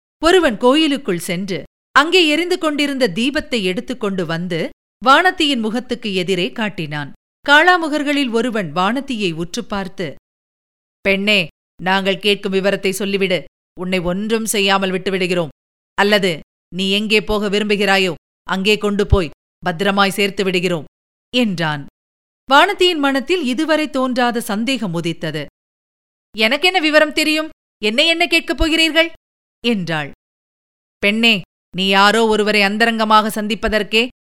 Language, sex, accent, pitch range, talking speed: Tamil, female, native, 195-275 Hz, 105 wpm